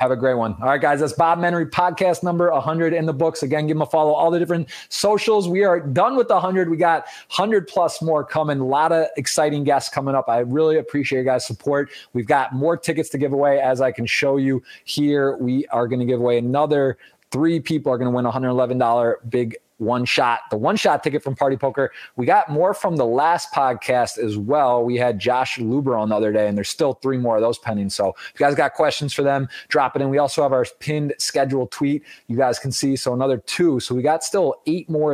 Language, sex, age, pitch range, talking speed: English, male, 20-39, 125-155 Hz, 240 wpm